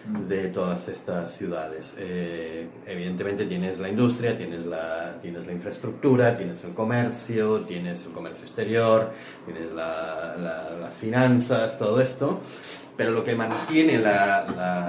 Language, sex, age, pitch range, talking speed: Spanish, male, 40-59, 85-110 Hz, 135 wpm